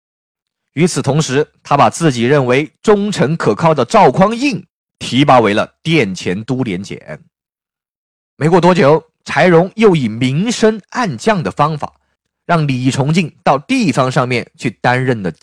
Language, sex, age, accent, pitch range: Chinese, male, 20-39, native, 130-190 Hz